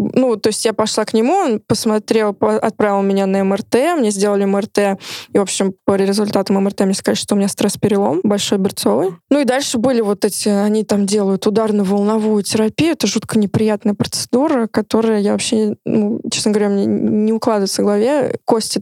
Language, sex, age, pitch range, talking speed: Russian, female, 20-39, 200-235 Hz, 180 wpm